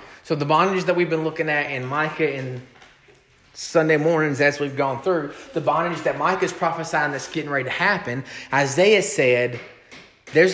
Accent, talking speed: American, 170 wpm